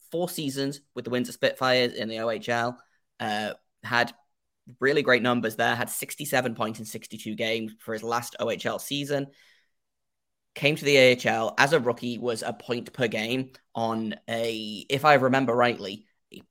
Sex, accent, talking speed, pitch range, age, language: male, British, 165 wpm, 115-140 Hz, 10-29, English